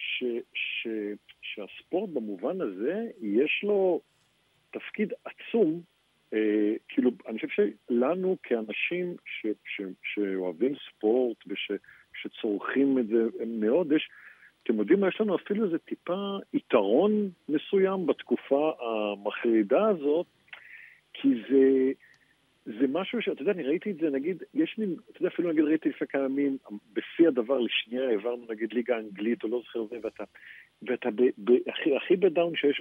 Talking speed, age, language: 140 wpm, 50-69, Hebrew